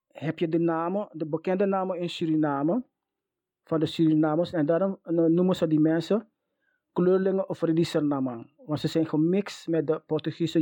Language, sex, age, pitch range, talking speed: English, male, 30-49, 170-215 Hz, 160 wpm